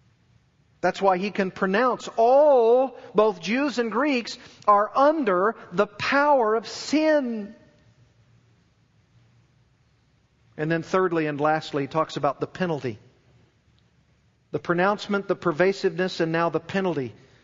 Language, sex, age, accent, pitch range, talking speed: English, male, 50-69, American, 155-225 Hz, 115 wpm